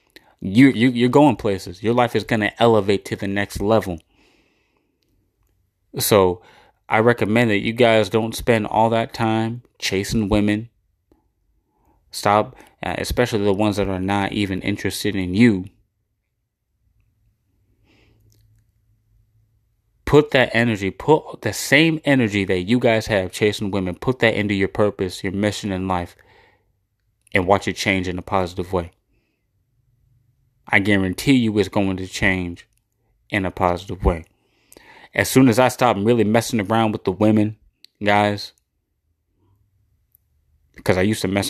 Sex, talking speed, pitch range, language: male, 140 wpm, 95-110 Hz, English